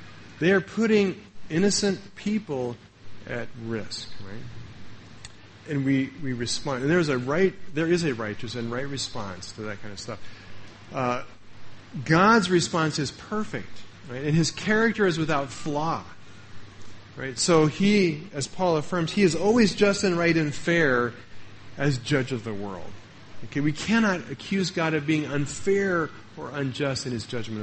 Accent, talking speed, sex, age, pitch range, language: American, 155 wpm, male, 40-59, 110-170 Hz, English